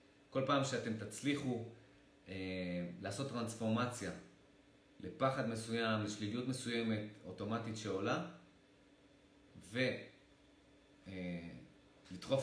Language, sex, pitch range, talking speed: Hebrew, male, 105-135 Hz, 70 wpm